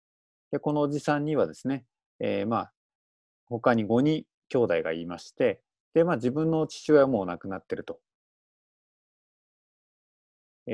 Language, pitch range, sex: Japanese, 110-155 Hz, male